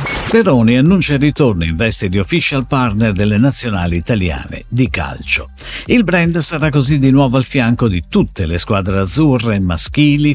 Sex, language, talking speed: male, Italian, 160 wpm